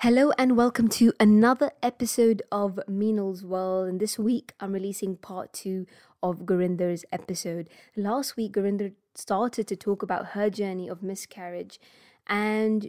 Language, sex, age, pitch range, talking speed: English, female, 20-39, 185-225 Hz, 145 wpm